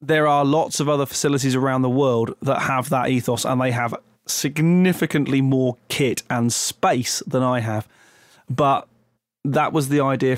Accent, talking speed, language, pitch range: British, 170 wpm, English, 125-150 Hz